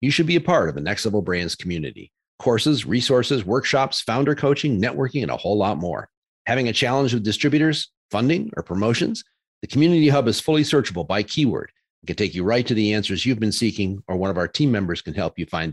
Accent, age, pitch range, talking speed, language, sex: American, 40-59, 100-140 Hz, 225 wpm, English, male